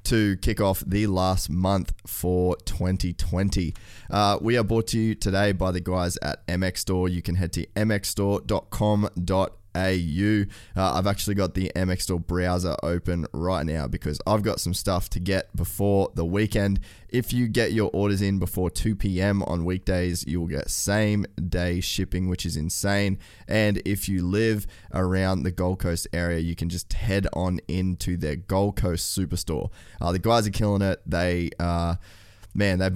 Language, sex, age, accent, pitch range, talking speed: English, male, 20-39, Australian, 90-100 Hz, 170 wpm